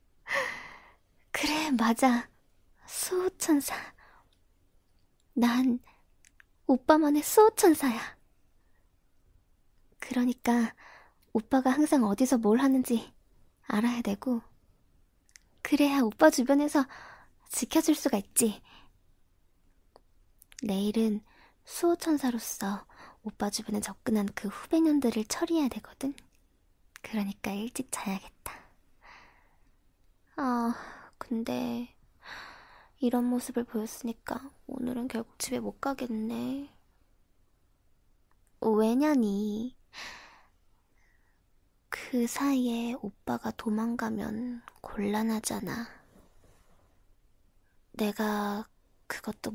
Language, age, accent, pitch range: Korean, 20-39, native, 195-260 Hz